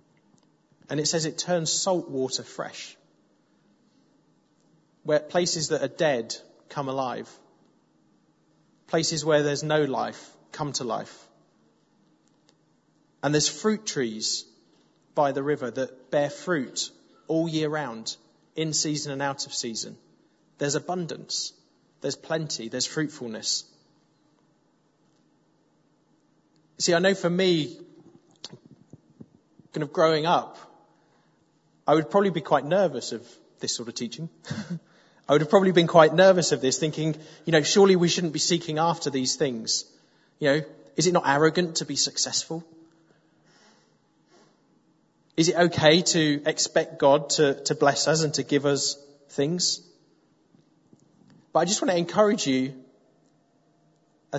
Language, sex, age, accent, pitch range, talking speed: English, male, 30-49, British, 140-165 Hz, 130 wpm